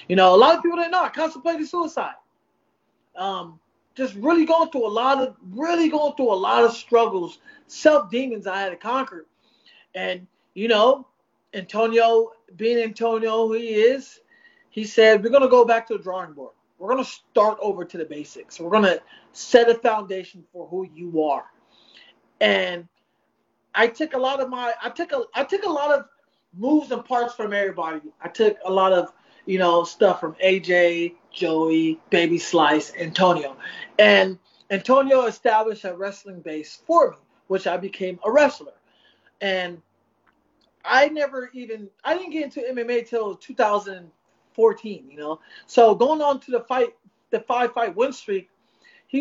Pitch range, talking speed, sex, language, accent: 185-265 Hz, 170 wpm, male, English, American